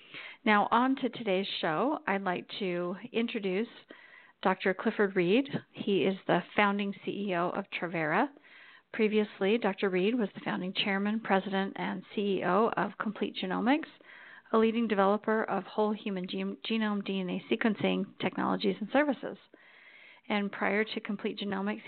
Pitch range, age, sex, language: 190-225 Hz, 40-59, female, English